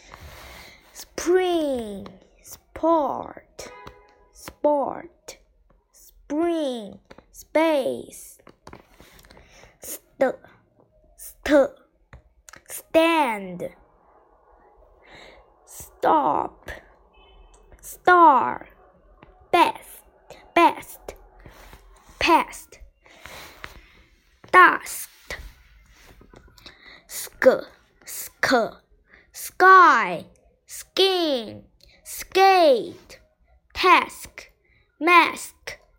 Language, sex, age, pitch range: Chinese, female, 10-29, 245-355 Hz